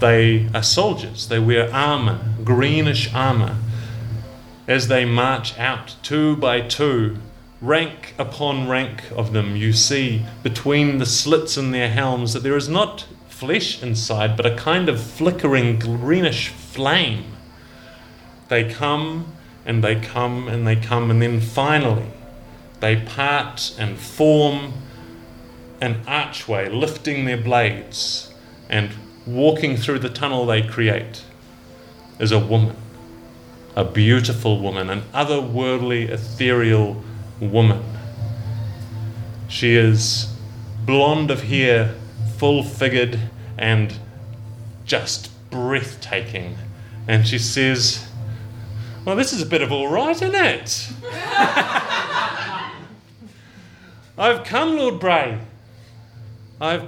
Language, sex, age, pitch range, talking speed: English, male, 30-49, 110-135 Hz, 110 wpm